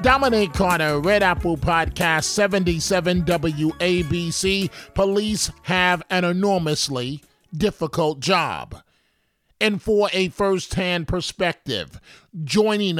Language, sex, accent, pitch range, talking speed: English, male, American, 165-195 Hz, 90 wpm